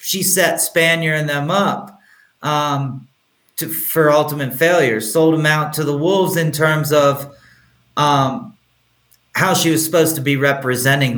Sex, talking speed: male, 145 wpm